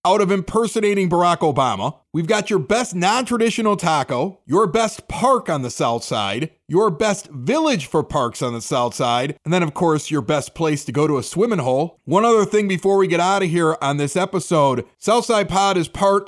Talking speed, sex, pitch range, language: 210 wpm, male, 135-190 Hz, English